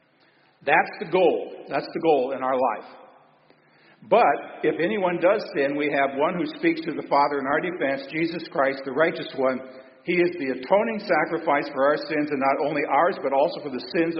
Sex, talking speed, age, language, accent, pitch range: male, 200 wpm, 50-69, English, American, 145-200 Hz